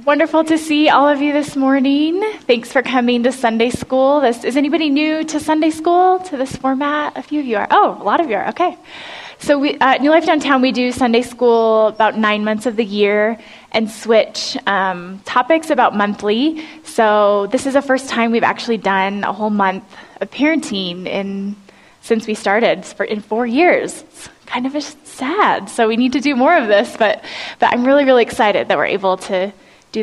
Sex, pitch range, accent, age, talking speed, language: female, 205-270 Hz, American, 10-29, 205 wpm, English